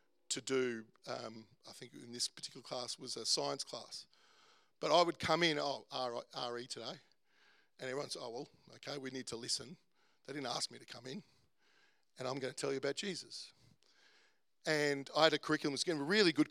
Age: 50-69